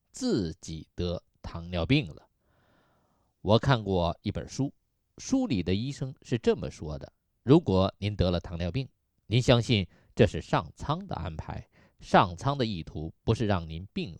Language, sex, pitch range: Chinese, male, 90-125 Hz